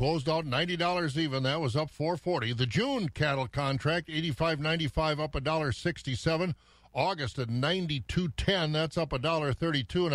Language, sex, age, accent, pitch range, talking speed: English, male, 50-69, American, 120-160 Hz, 130 wpm